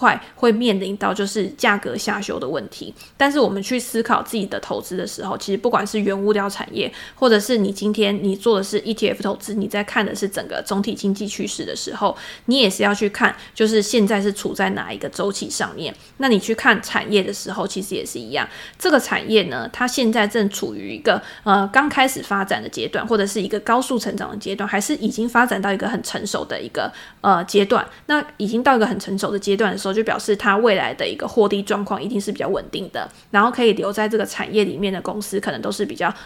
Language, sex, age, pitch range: Chinese, female, 20-39, 200-235 Hz